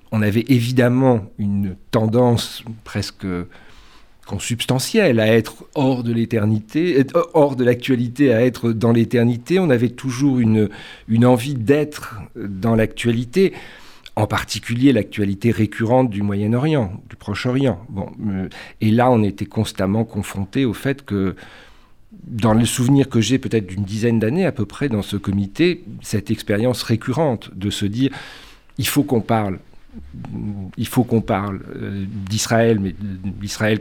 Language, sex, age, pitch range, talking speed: French, male, 50-69, 100-125 Hz, 140 wpm